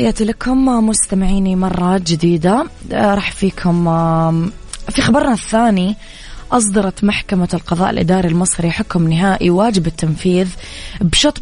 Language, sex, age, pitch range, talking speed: English, female, 20-39, 170-200 Hz, 100 wpm